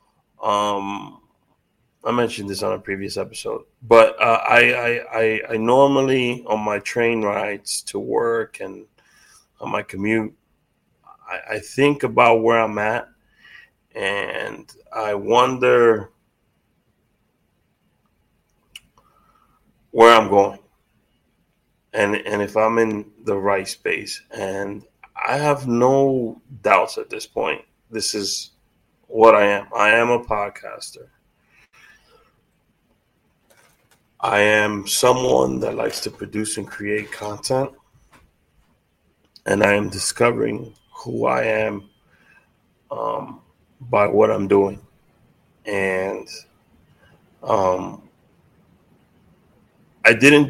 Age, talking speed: 30-49, 105 wpm